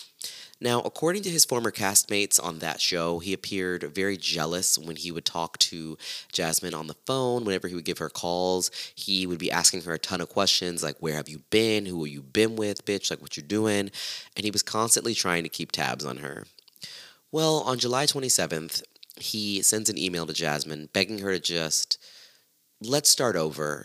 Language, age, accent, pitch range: English, 30-49, American, 80-110 Hz